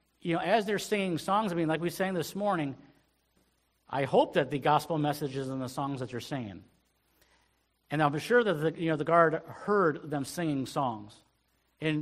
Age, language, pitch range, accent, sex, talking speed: 50-69, English, 115-160 Hz, American, male, 210 wpm